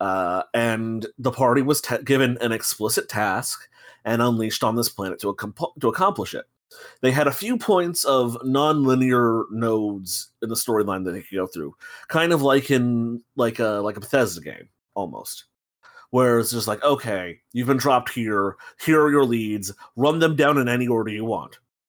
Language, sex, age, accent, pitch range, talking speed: English, male, 30-49, American, 110-140 Hz, 185 wpm